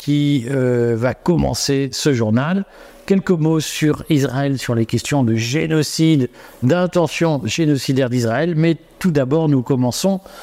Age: 50-69